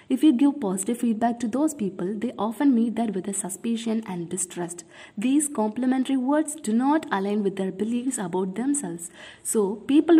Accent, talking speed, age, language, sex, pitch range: Indian, 175 wpm, 20-39, English, female, 195-235 Hz